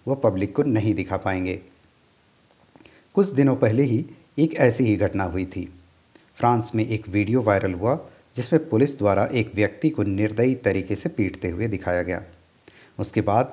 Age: 50-69